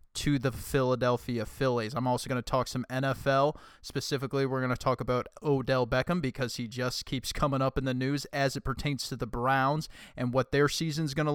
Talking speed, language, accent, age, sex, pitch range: 210 wpm, English, American, 20-39, male, 120-140 Hz